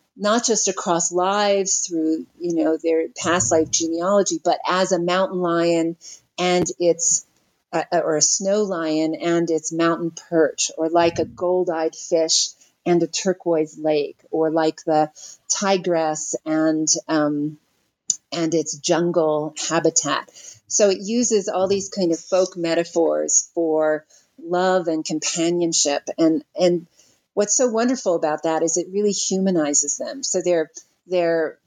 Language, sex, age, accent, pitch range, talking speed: English, female, 40-59, American, 160-190 Hz, 140 wpm